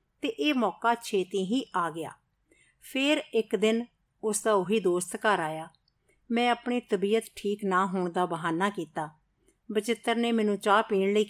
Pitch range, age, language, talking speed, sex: 185-230 Hz, 50-69, Punjabi, 155 wpm, female